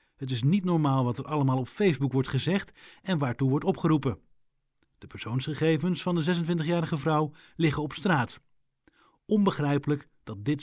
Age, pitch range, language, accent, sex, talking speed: 40-59, 130-165 Hz, English, Dutch, male, 150 wpm